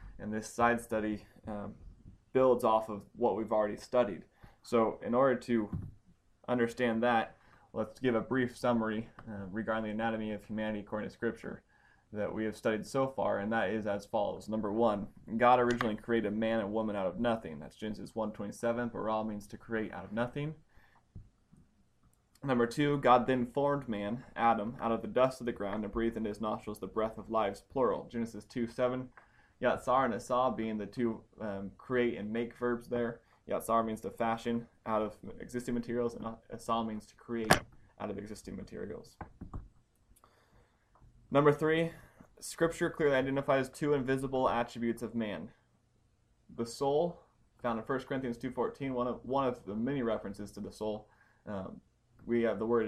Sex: male